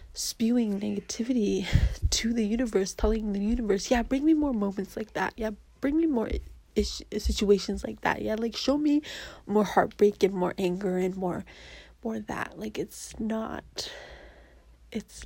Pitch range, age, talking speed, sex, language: 200-230 Hz, 20-39, 155 wpm, female, English